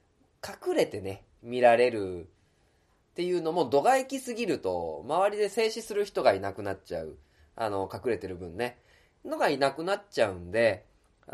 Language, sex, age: Japanese, male, 20-39